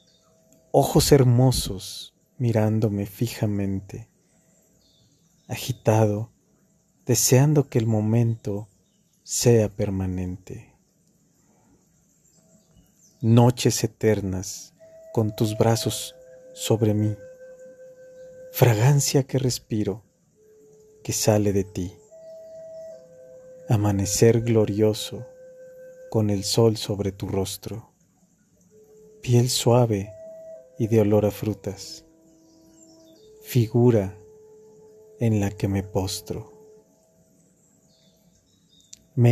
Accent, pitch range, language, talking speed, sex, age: Mexican, 110-165 Hz, Spanish, 70 wpm, male, 40-59